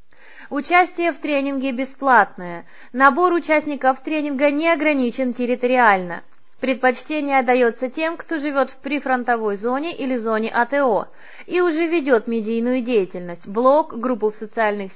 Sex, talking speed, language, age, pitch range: female, 120 wpm, Russian, 20-39, 230-300 Hz